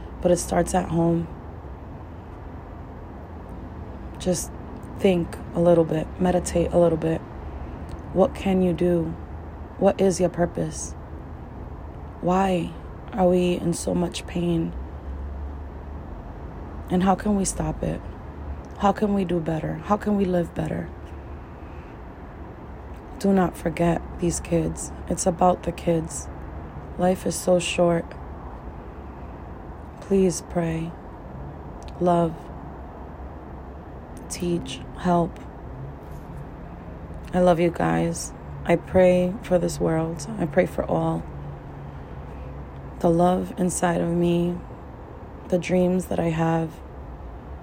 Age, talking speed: 20-39, 110 wpm